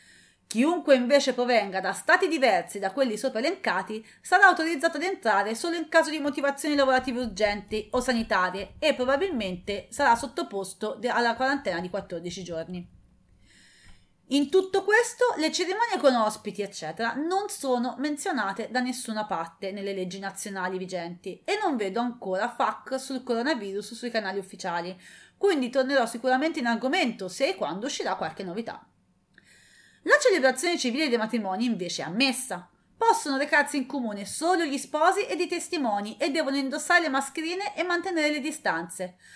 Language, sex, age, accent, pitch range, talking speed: English, female, 30-49, Italian, 205-320 Hz, 150 wpm